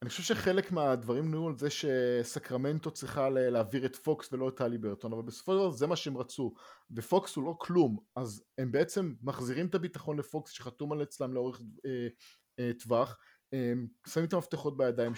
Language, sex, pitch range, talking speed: English, male, 125-170 Hz, 180 wpm